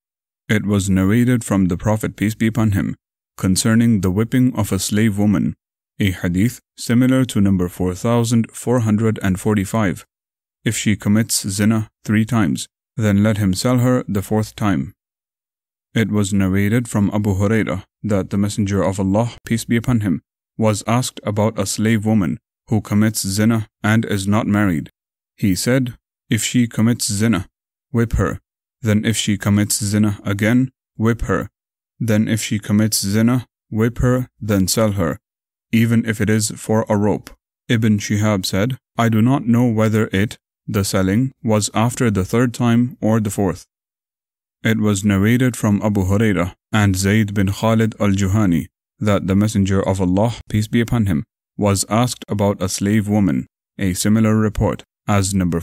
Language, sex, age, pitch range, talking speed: English, male, 30-49, 100-115 Hz, 160 wpm